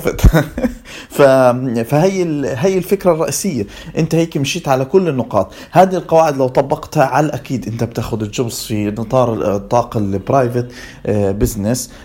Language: Arabic